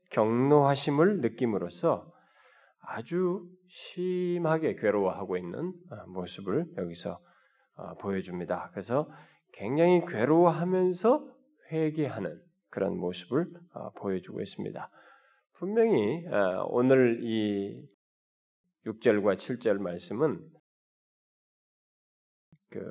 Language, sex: Korean, male